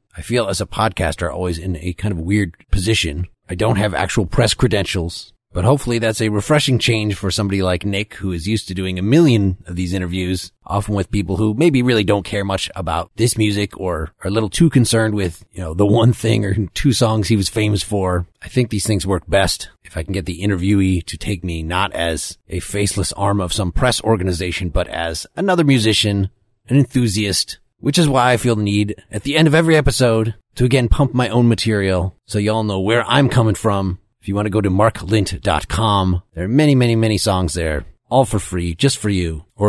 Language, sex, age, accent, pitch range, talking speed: English, male, 30-49, American, 90-115 Hz, 220 wpm